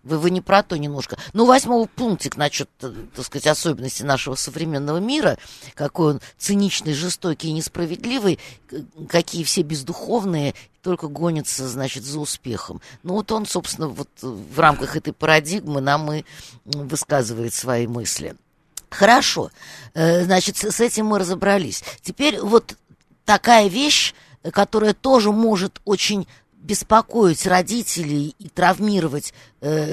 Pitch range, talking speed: 145-190 Hz, 120 wpm